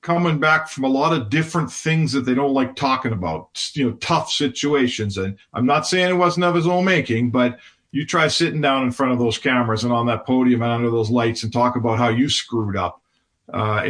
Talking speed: 235 wpm